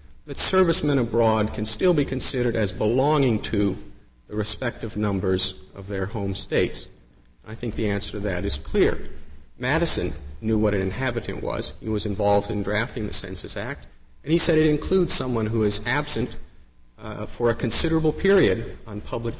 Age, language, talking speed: 50-69, English, 170 wpm